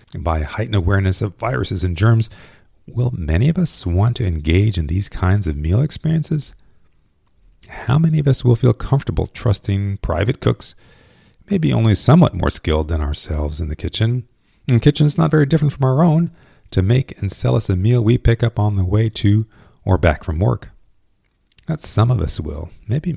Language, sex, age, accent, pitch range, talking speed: English, male, 40-59, American, 90-125 Hz, 185 wpm